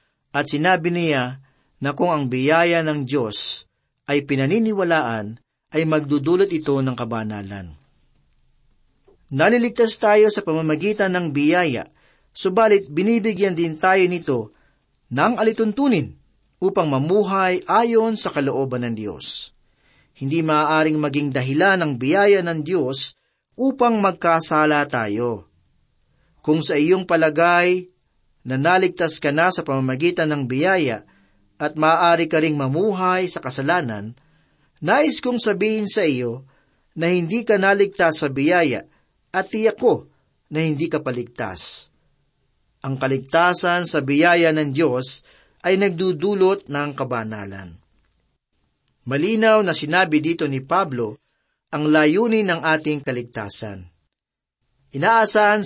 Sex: male